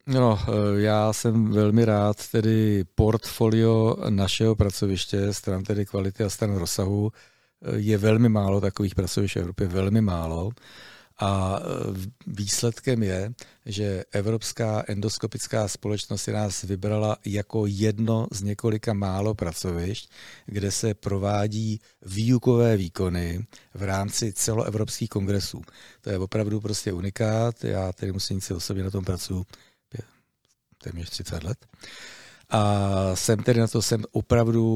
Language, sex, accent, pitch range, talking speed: Czech, male, native, 100-110 Hz, 125 wpm